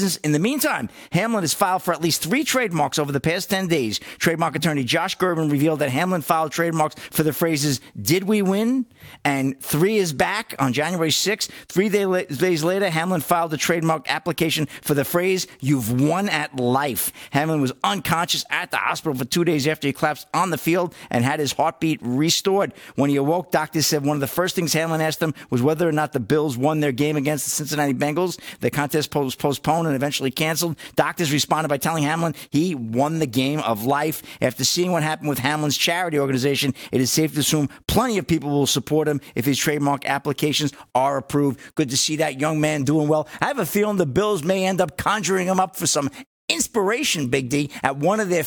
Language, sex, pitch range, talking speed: English, male, 145-185 Hz, 210 wpm